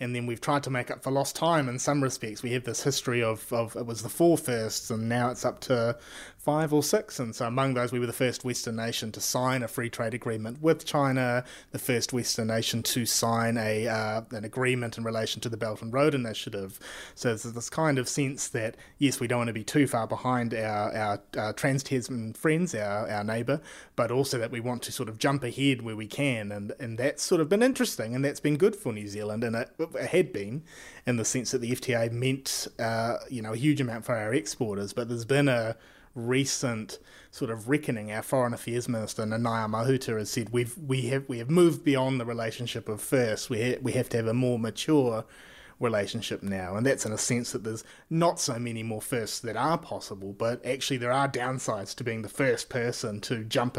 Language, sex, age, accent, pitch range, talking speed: English, male, 30-49, Australian, 110-135 Hz, 230 wpm